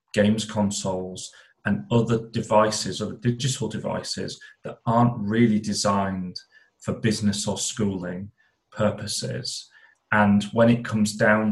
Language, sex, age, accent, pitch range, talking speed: English, male, 30-49, British, 100-115 Hz, 115 wpm